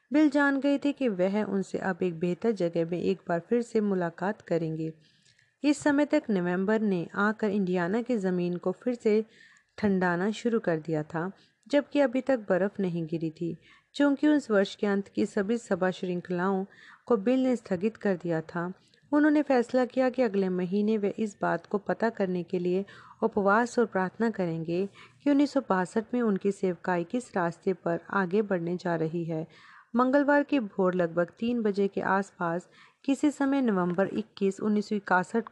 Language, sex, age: Hindi, female, 40-59